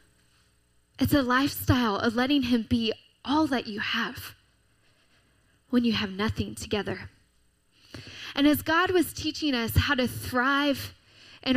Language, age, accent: English, 10-29, American